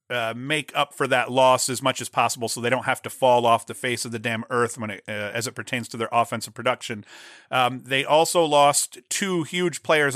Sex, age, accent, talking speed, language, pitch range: male, 40-59, American, 235 wpm, English, 120-140 Hz